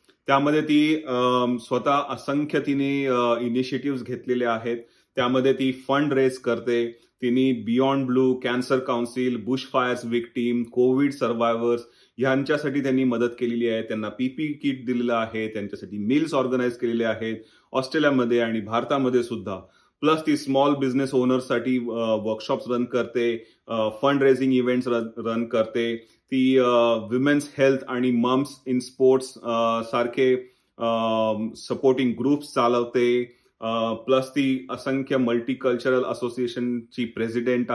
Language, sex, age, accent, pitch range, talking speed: Marathi, male, 30-49, native, 120-135 Hz, 120 wpm